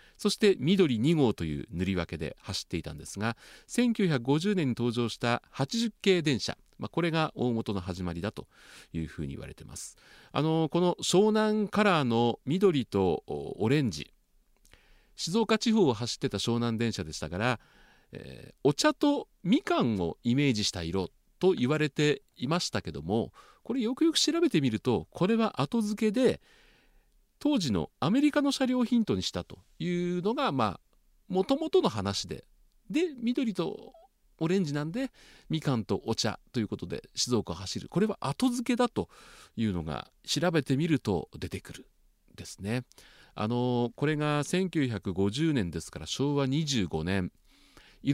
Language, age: Japanese, 40-59